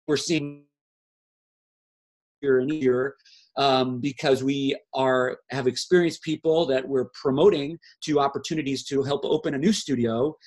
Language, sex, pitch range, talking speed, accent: English, male, 125-160 Hz, 130 wpm, American